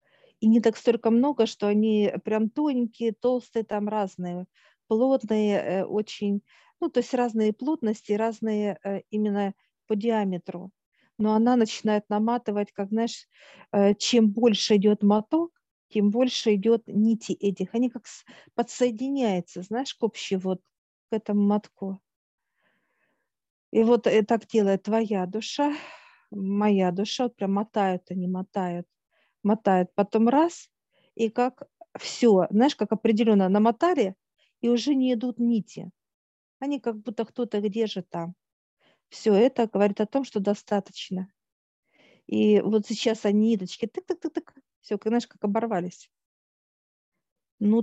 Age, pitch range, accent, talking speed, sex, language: 50-69, 200-240 Hz, native, 130 wpm, female, Russian